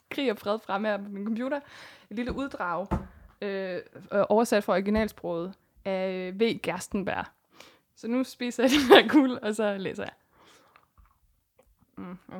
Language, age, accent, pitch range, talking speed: Danish, 20-39, native, 200-255 Hz, 150 wpm